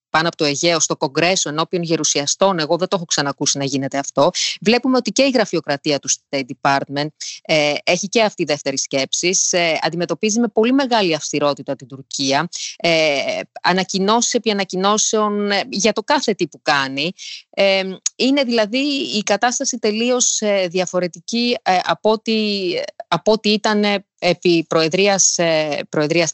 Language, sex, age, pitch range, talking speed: Greek, female, 20-39, 155-215 Hz, 155 wpm